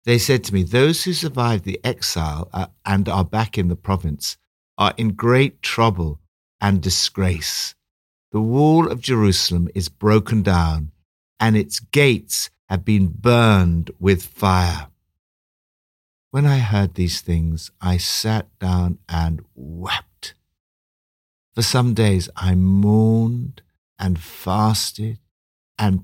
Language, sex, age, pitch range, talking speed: English, male, 60-79, 85-115 Hz, 125 wpm